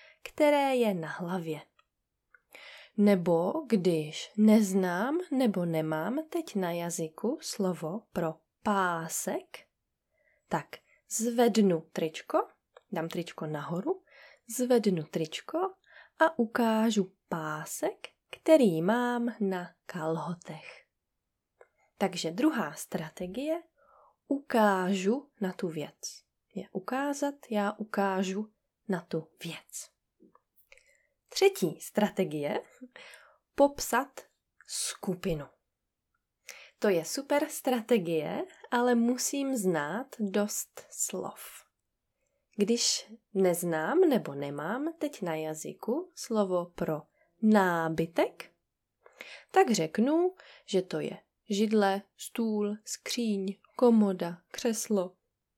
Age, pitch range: 20-39, 175-255 Hz